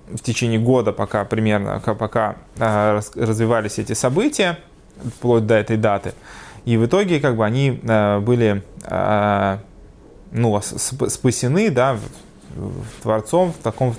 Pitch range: 110-160 Hz